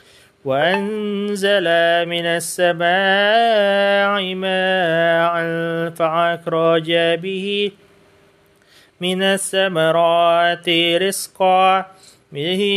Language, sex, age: Indonesian, male, 20-39